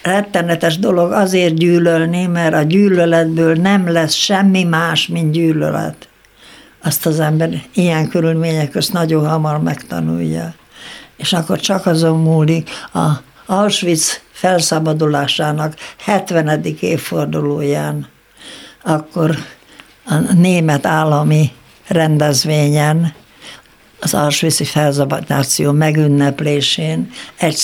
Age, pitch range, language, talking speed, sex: 60-79, 145-170 Hz, Hungarian, 90 wpm, female